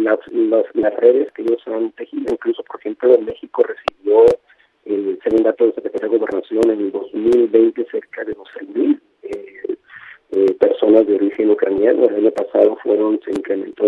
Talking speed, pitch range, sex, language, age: 175 wpm, 335-450 Hz, male, Spanish, 40-59